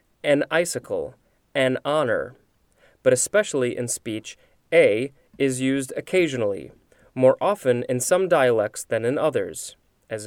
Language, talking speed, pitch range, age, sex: English, 125 wpm, 125-205 Hz, 30-49, male